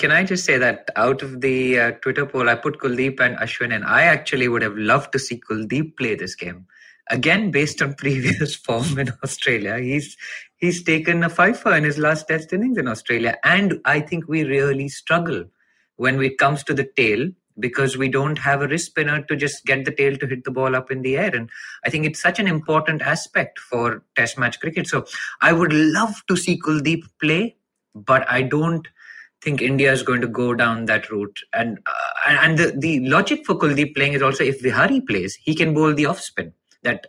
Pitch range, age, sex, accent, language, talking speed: 125-155 Hz, 20-39, male, Indian, English, 210 wpm